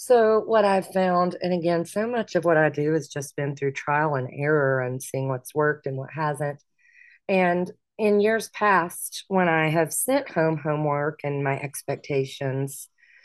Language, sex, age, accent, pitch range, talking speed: English, female, 30-49, American, 140-175 Hz, 175 wpm